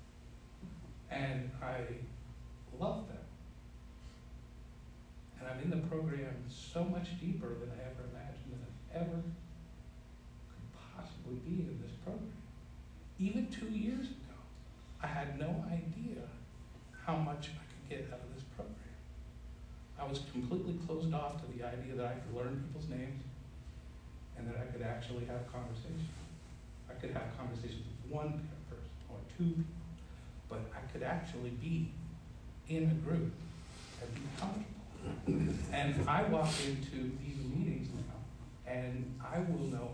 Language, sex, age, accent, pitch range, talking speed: English, male, 60-79, American, 120-165 Hz, 140 wpm